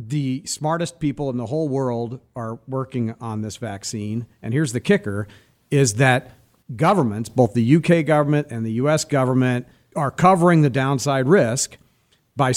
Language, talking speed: English, 160 wpm